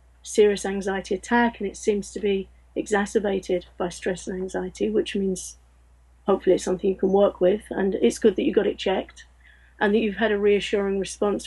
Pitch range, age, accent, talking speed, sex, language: 190-215 Hz, 40-59, British, 195 wpm, female, English